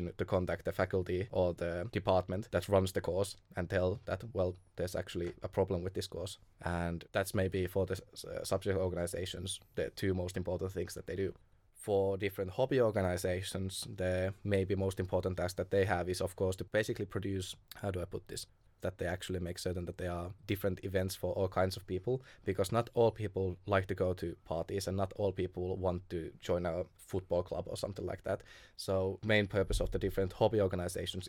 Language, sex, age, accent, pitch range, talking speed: Finnish, male, 20-39, native, 90-100 Hz, 205 wpm